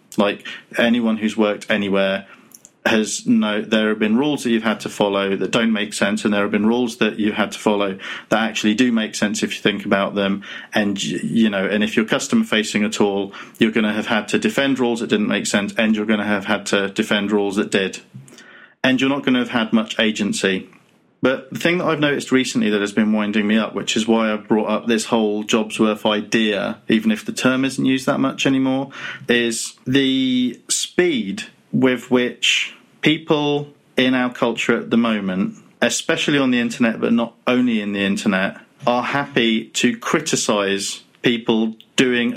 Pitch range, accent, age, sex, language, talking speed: 105-130 Hz, British, 40-59, male, English, 200 wpm